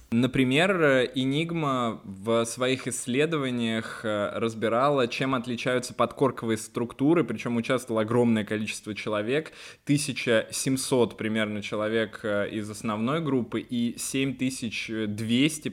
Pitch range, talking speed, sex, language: 110-130 Hz, 90 wpm, male, Russian